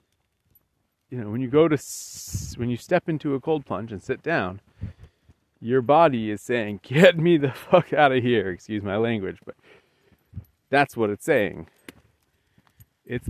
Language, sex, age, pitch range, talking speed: English, male, 30-49, 100-130 Hz, 160 wpm